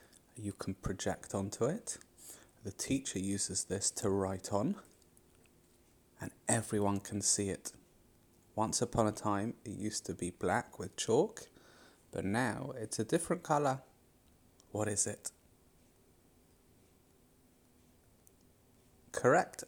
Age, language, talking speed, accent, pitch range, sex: 30-49, English, 115 wpm, British, 100-120 Hz, male